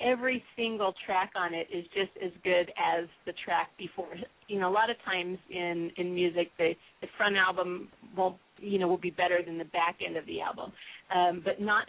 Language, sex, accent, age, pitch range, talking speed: English, female, American, 40-59, 175-195 Hz, 210 wpm